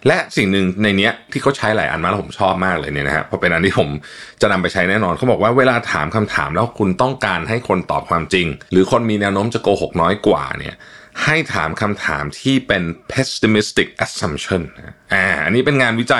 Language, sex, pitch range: Thai, male, 90-120 Hz